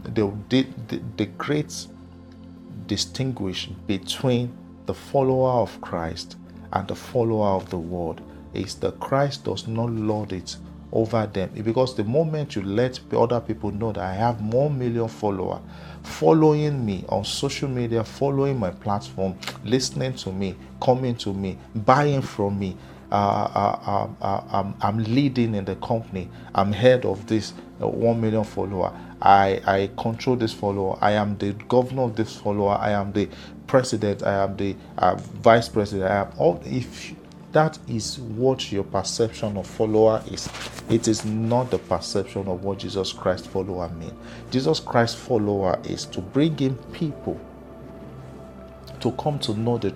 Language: English